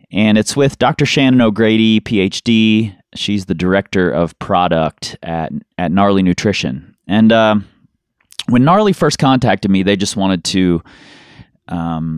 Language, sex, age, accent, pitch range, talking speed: English, male, 30-49, American, 85-115 Hz, 140 wpm